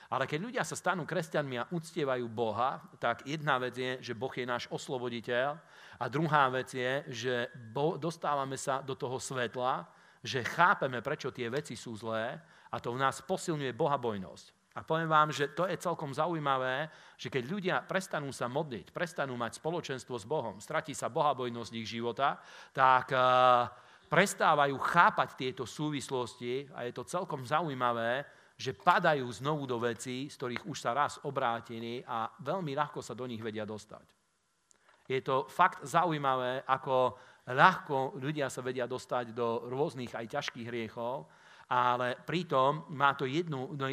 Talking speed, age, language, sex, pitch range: 160 wpm, 40-59, Slovak, male, 120-150 Hz